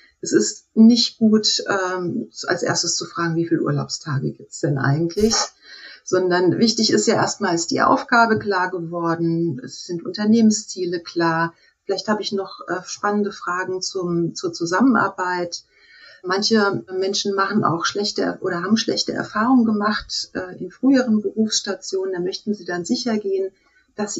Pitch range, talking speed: 180-225 Hz, 135 wpm